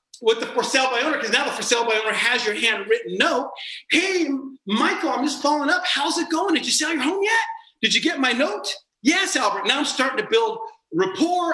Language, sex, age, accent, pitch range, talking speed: English, male, 40-59, American, 240-325 Hz, 235 wpm